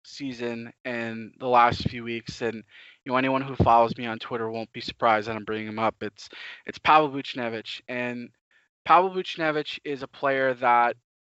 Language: English